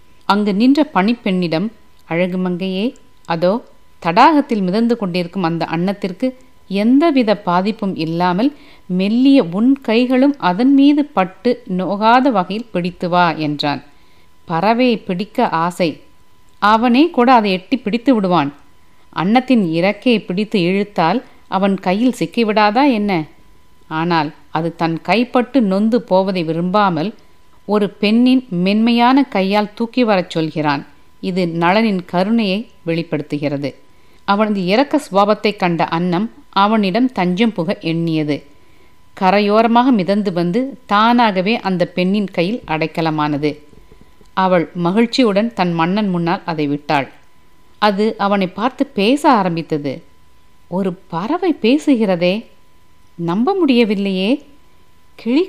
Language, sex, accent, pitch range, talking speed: Tamil, female, native, 170-235 Hz, 100 wpm